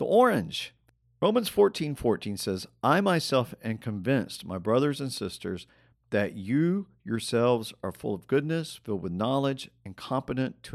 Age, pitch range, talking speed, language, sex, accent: 50-69, 100-140 Hz, 150 wpm, English, male, American